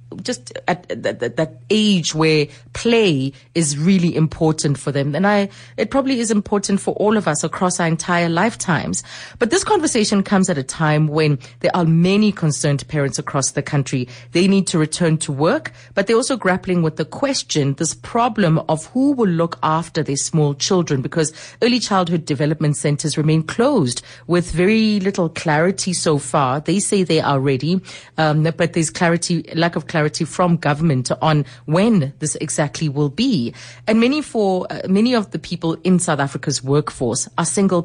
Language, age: English, 30-49